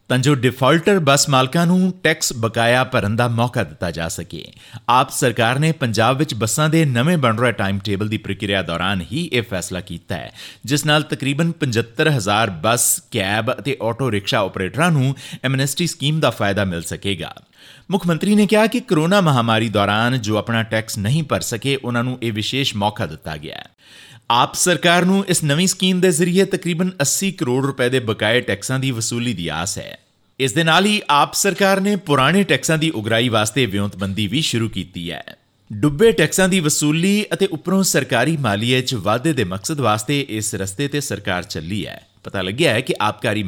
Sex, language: male, Punjabi